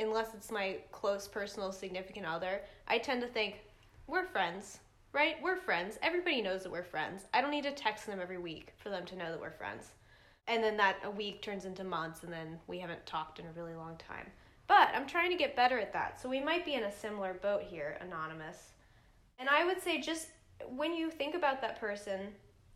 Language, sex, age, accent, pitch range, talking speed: English, female, 10-29, American, 190-260 Hz, 220 wpm